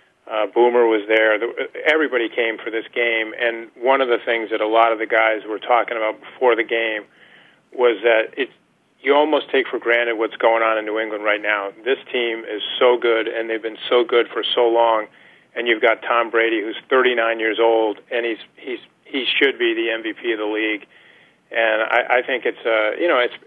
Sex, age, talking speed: male, 40-59, 215 wpm